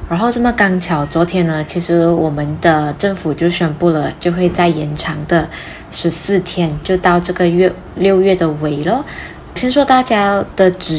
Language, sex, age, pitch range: Chinese, female, 10-29, 160-190 Hz